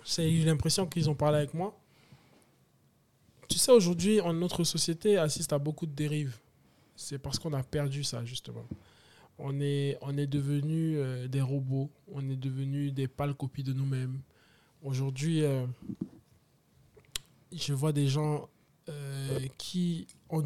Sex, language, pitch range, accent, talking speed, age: male, French, 130-160 Hz, French, 150 wpm, 20-39